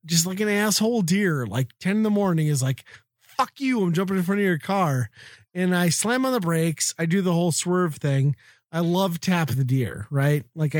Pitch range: 130-180 Hz